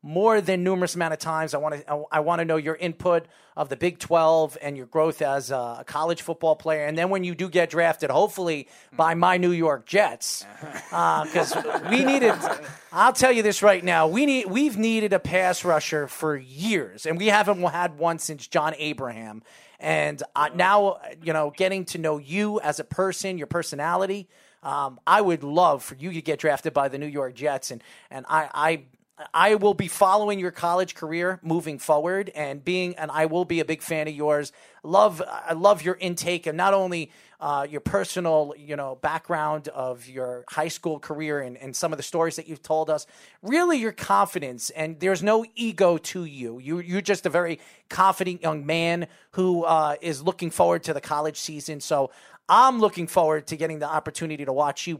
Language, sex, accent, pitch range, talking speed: English, male, American, 150-185 Hz, 205 wpm